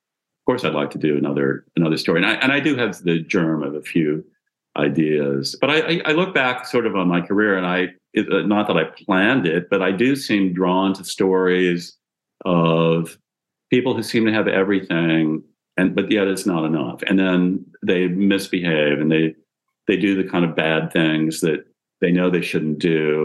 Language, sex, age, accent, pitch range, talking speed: English, male, 50-69, American, 80-100 Hz, 205 wpm